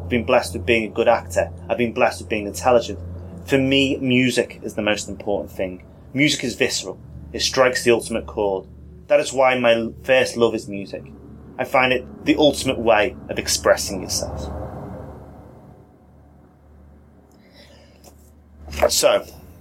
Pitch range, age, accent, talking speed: 85-120 Hz, 30-49, British, 145 wpm